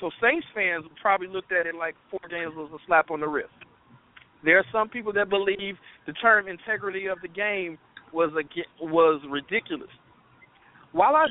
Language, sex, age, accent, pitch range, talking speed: English, male, 50-69, American, 165-215 Hz, 180 wpm